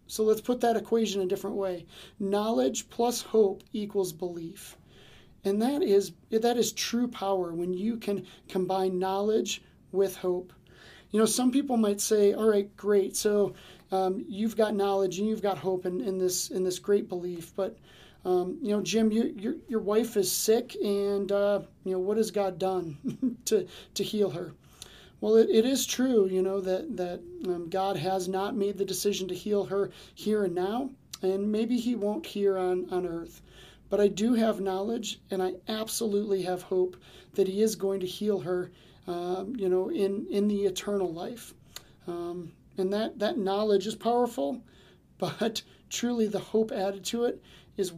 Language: English